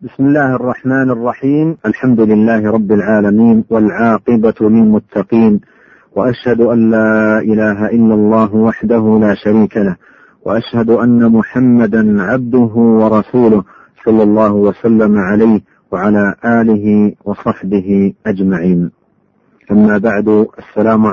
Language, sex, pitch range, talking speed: Arabic, male, 105-120 Hz, 105 wpm